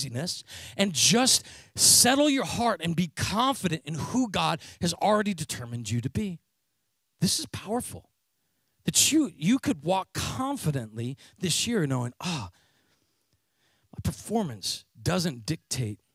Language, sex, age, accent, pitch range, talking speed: English, male, 40-59, American, 115-170 Hz, 125 wpm